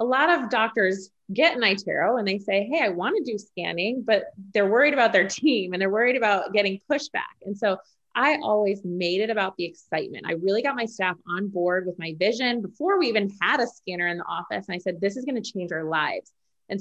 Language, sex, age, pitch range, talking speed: English, female, 20-39, 195-250 Hz, 240 wpm